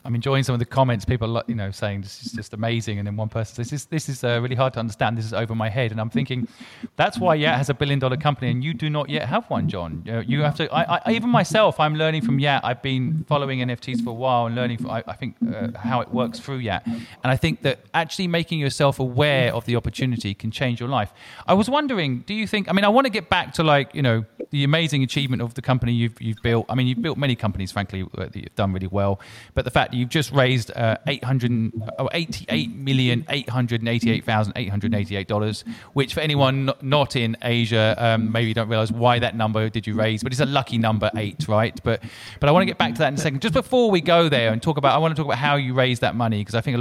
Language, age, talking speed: English, 40-59, 260 wpm